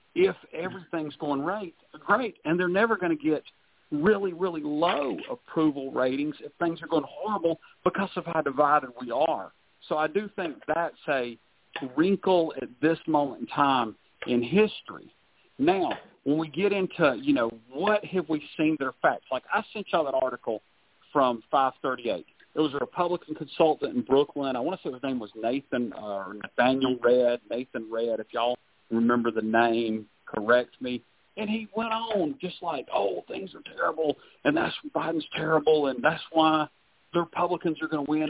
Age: 50-69